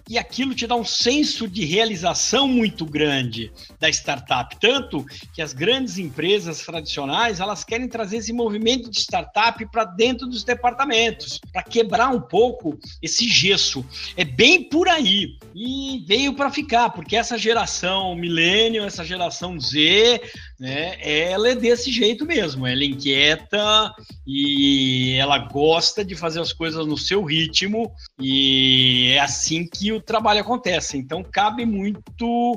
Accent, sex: Brazilian, male